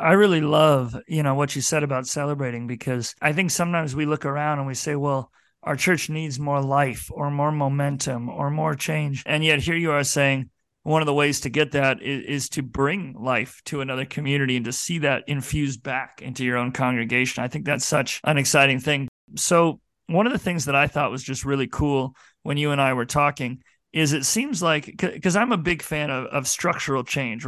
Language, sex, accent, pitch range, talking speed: English, male, American, 135-160 Hz, 220 wpm